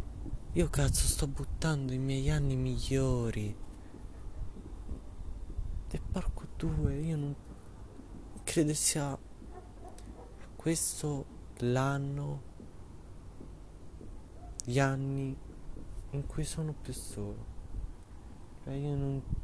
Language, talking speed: Italian, 80 wpm